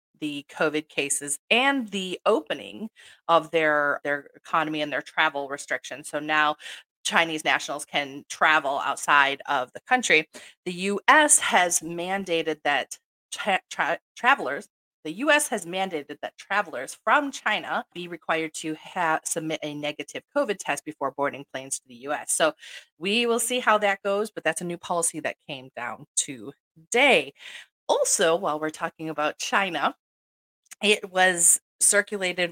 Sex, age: female, 30-49